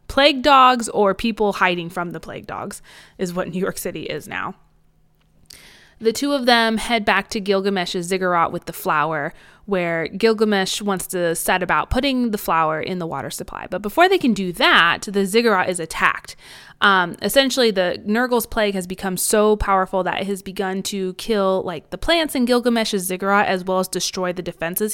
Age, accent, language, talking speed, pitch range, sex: 20-39, American, English, 190 wpm, 180-230 Hz, female